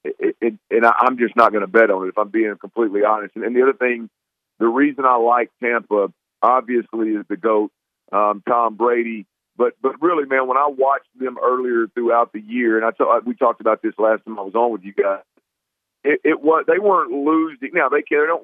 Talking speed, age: 235 wpm, 40-59